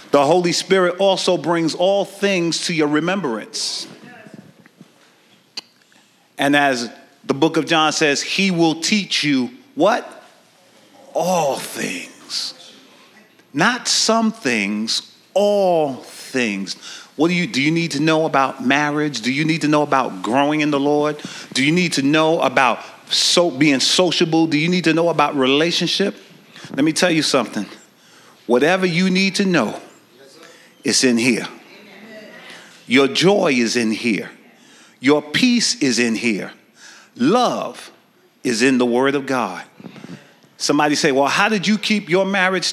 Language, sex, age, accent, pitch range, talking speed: English, male, 40-59, American, 145-195 Hz, 145 wpm